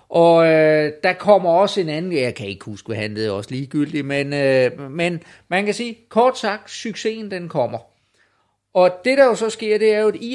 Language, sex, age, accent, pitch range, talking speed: Danish, male, 30-49, native, 140-180 Hz, 220 wpm